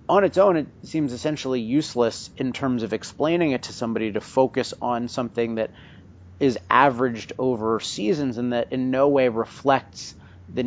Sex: male